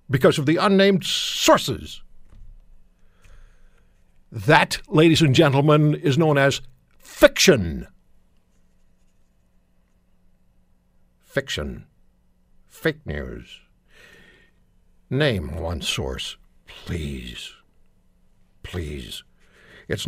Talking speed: 65 wpm